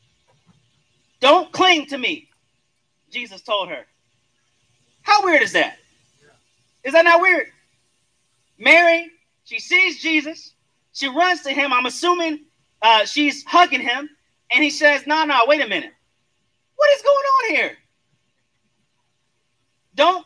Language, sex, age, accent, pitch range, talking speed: English, male, 30-49, American, 225-310 Hz, 125 wpm